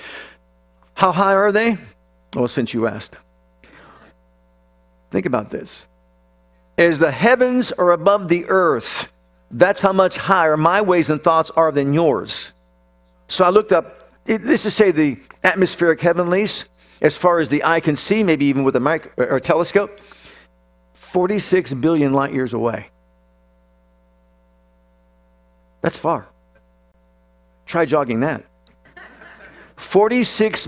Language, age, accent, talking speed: English, 50-69, American, 130 wpm